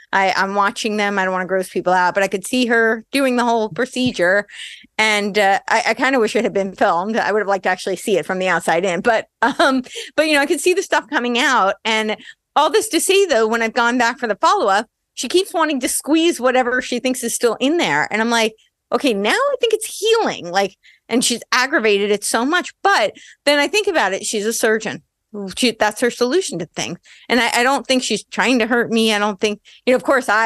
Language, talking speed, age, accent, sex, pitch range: English, 250 wpm, 30-49, American, female, 200-255 Hz